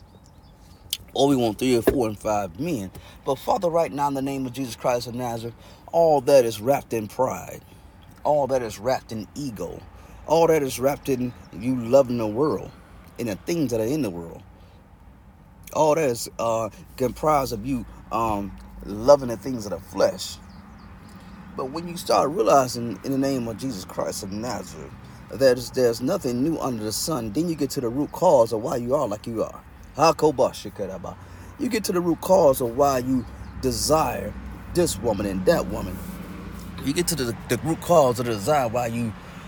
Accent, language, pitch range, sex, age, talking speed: American, English, 100-140 Hz, male, 30-49, 195 wpm